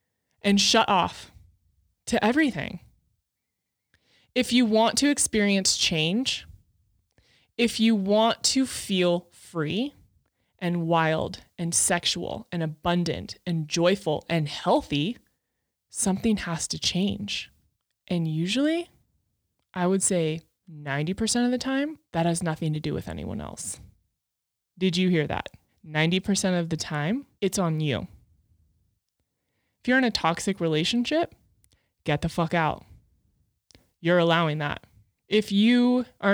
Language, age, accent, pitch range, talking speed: English, 20-39, American, 155-225 Hz, 120 wpm